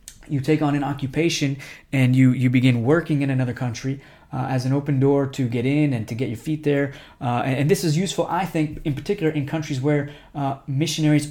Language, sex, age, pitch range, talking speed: English, male, 20-39, 130-150 Hz, 225 wpm